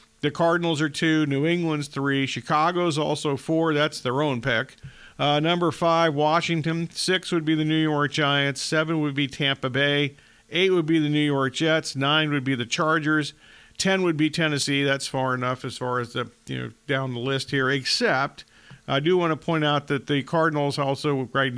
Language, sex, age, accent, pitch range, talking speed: English, male, 50-69, American, 130-150 Hz, 195 wpm